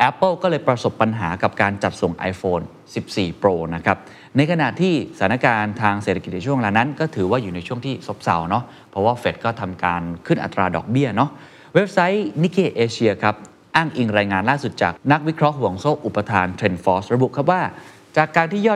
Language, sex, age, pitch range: Thai, male, 20-39, 100-145 Hz